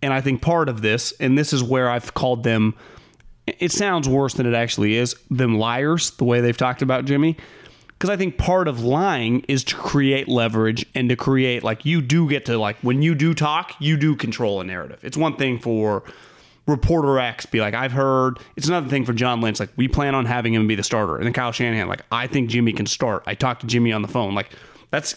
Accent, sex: American, male